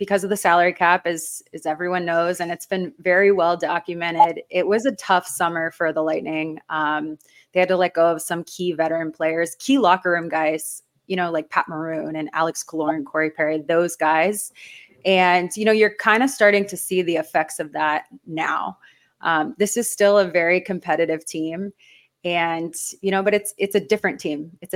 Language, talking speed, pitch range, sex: English, 200 wpm, 160-190 Hz, female